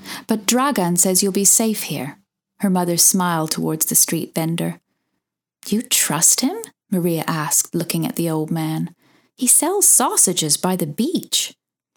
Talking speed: 155 wpm